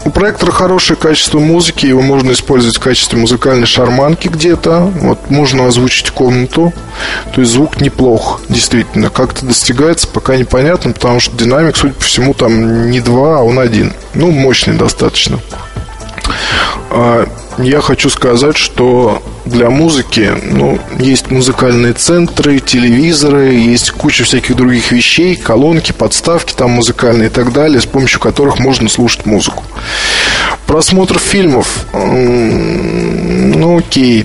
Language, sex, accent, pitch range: Russian, male, native, 120-150 Hz